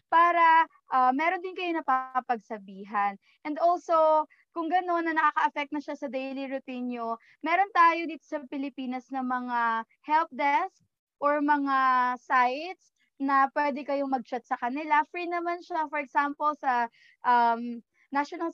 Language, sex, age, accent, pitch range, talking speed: Filipino, female, 20-39, native, 250-310 Hz, 140 wpm